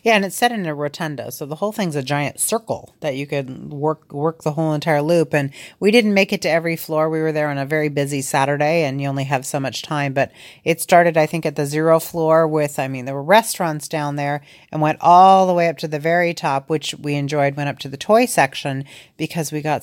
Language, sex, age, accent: English, female, 40-59, American